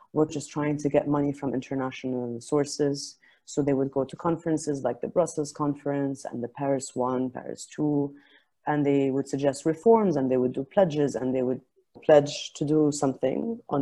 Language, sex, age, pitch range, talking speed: English, female, 30-49, 140-160 Hz, 185 wpm